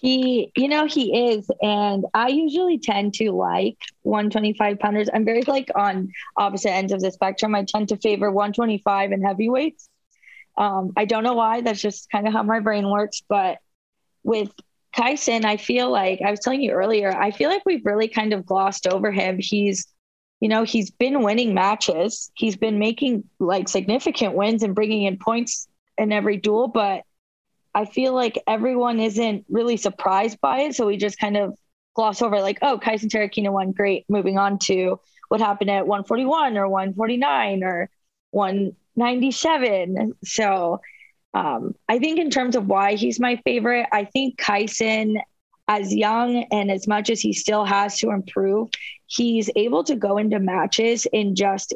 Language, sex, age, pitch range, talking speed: English, female, 20-39, 200-235 Hz, 175 wpm